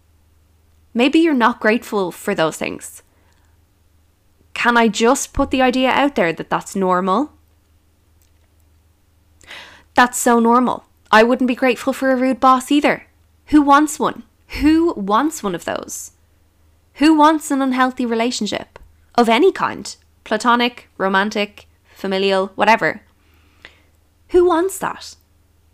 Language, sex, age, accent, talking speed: English, female, 10-29, Irish, 125 wpm